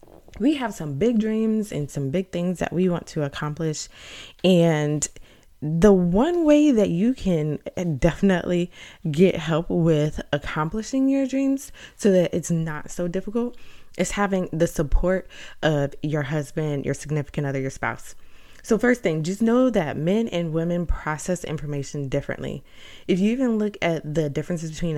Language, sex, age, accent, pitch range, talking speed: English, female, 20-39, American, 150-190 Hz, 160 wpm